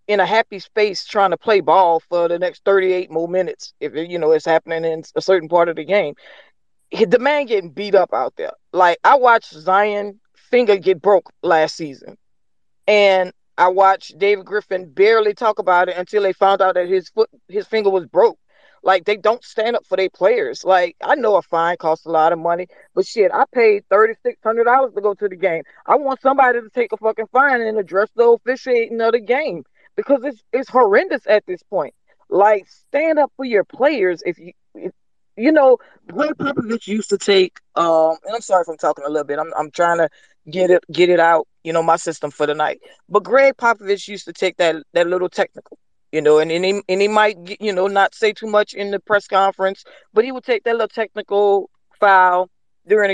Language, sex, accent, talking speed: English, female, American, 215 wpm